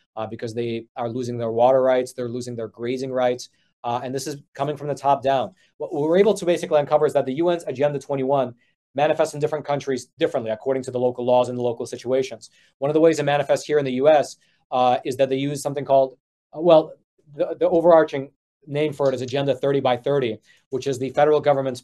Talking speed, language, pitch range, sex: 225 wpm, English, 130-150 Hz, male